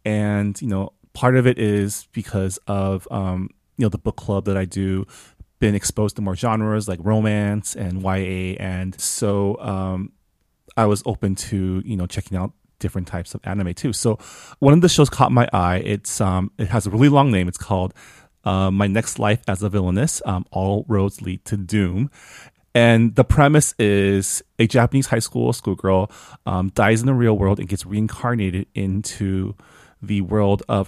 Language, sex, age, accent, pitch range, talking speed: English, male, 30-49, American, 95-115 Hz, 185 wpm